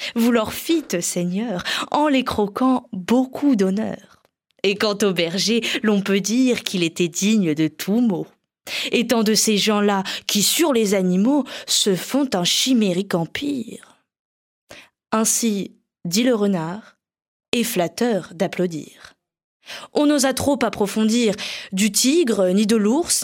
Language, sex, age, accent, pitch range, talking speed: French, female, 20-39, French, 195-245 Hz, 130 wpm